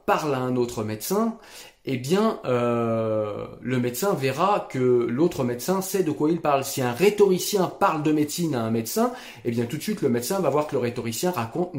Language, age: French, 30-49